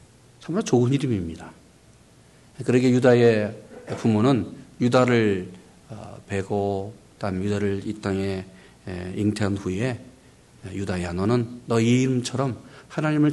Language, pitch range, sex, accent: Korean, 95-140 Hz, male, native